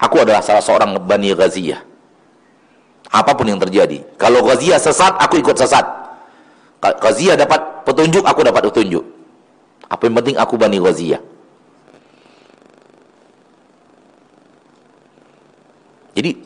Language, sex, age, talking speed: Indonesian, male, 50-69, 100 wpm